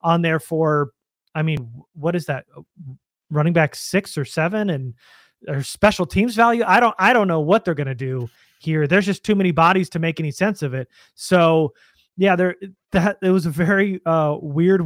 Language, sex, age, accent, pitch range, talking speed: English, male, 30-49, American, 140-170 Hz, 200 wpm